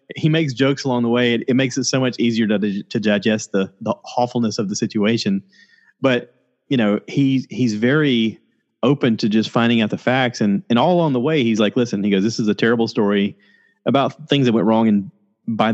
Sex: male